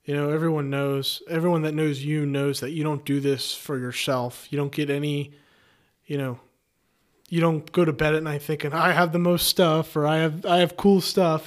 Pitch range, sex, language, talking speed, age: 140-165 Hz, male, English, 220 wpm, 20-39